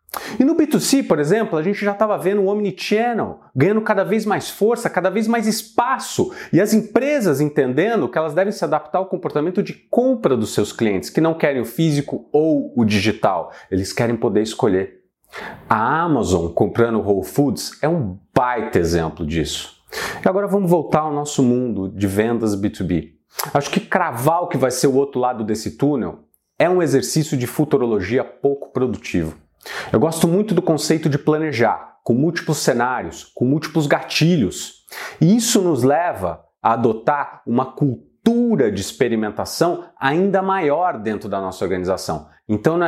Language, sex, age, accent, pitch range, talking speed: Portuguese, male, 40-59, Brazilian, 115-185 Hz, 165 wpm